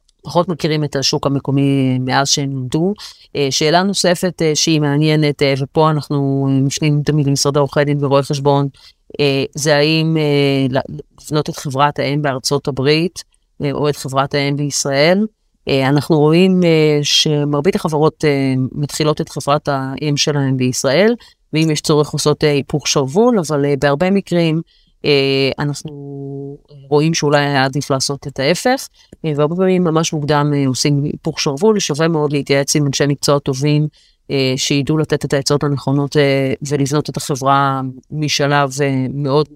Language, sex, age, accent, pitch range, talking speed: Hebrew, female, 30-49, native, 140-155 Hz, 130 wpm